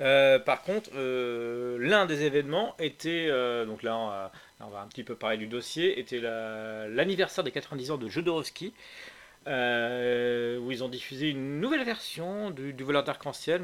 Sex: male